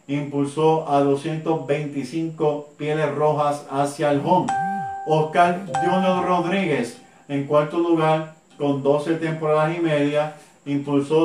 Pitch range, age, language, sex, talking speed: 145-180 Hz, 40-59, Spanish, male, 105 wpm